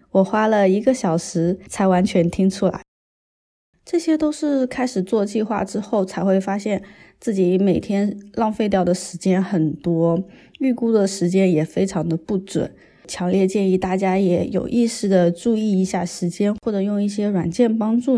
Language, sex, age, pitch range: Chinese, female, 20-39, 180-215 Hz